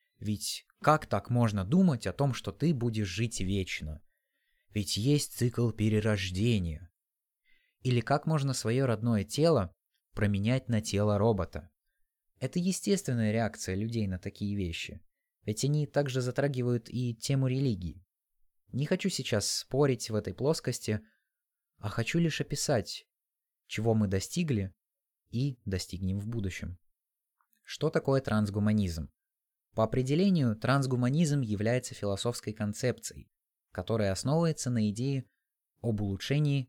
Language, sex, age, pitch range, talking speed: Russian, male, 20-39, 100-135 Hz, 120 wpm